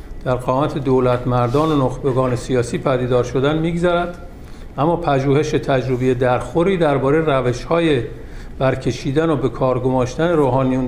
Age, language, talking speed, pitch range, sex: 50-69, Persian, 130 wpm, 125-150 Hz, male